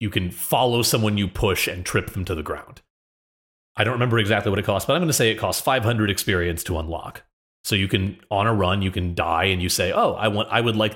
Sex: male